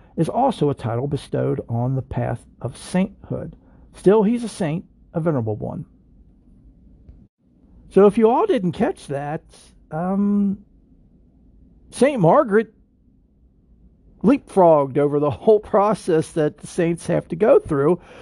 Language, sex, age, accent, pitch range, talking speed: English, male, 50-69, American, 125-165 Hz, 130 wpm